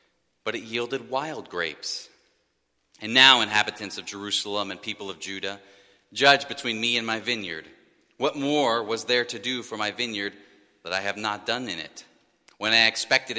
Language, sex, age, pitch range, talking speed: English, male, 40-59, 95-120 Hz, 175 wpm